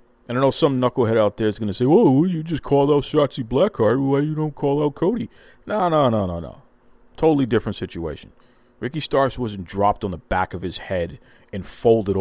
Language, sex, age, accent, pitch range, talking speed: English, male, 40-59, American, 100-125 Hz, 215 wpm